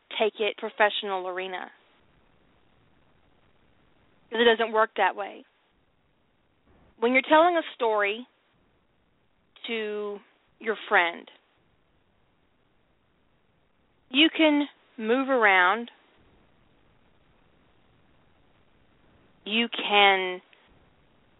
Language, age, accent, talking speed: English, 30-49, American, 65 wpm